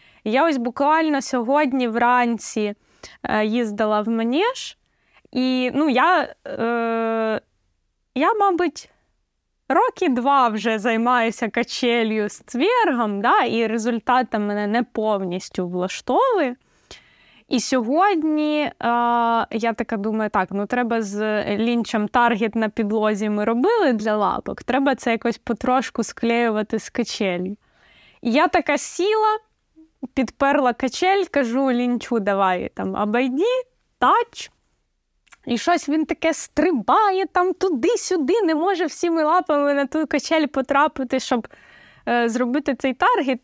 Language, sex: Ukrainian, female